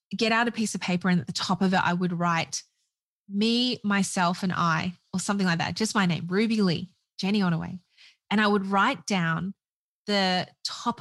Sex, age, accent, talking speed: female, 20-39, Australian, 200 wpm